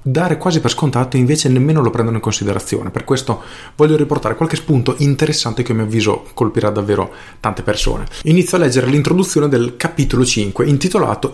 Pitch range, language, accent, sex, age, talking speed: 115-150 Hz, Italian, native, male, 30-49, 180 wpm